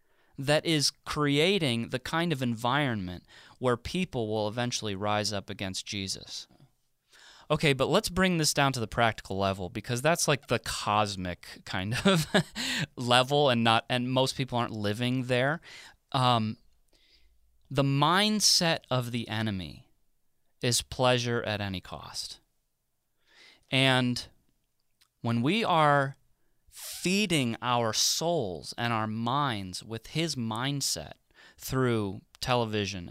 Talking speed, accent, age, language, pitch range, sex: 120 wpm, American, 30-49, English, 110-145 Hz, male